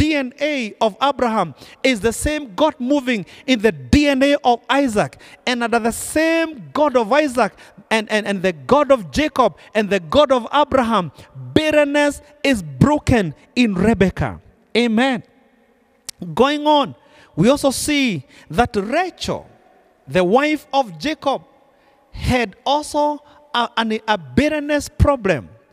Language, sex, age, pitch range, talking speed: English, male, 40-59, 230-295 Hz, 130 wpm